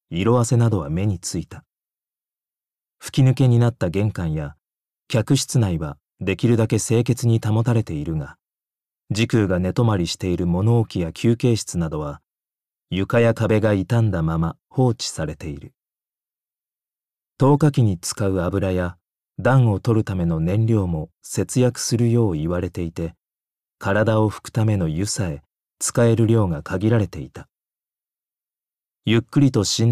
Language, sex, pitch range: Japanese, male, 85-115 Hz